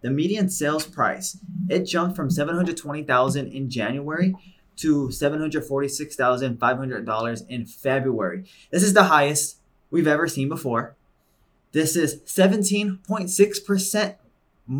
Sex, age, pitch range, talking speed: male, 20-39, 130-180 Hz, 100 wpm